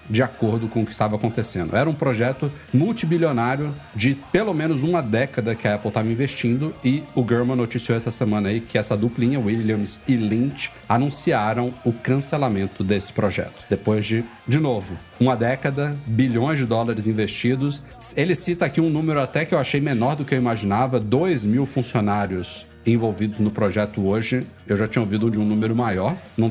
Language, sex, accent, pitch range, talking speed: Portuguese, male, Brazilian, 110-130 Hz, 180 wpm